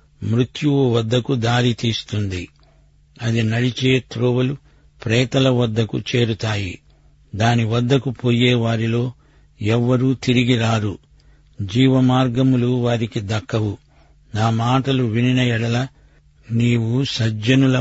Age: 60-79